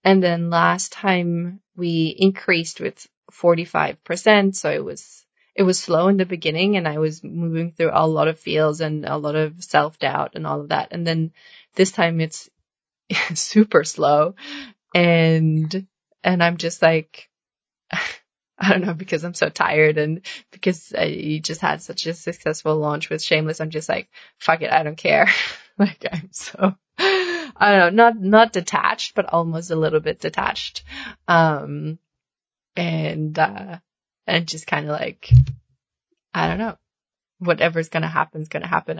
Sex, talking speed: female, 165 wpm